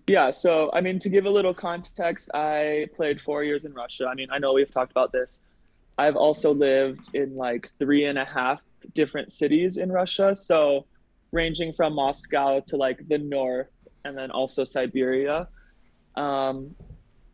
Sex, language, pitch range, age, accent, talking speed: male, English, 130-160 Hz, 20-39, American, 170 wpm